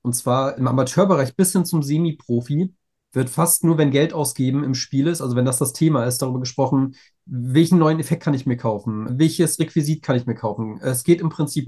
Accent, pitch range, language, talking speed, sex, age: German, 130-155 Hz, German, 215 wpm, male, 40-59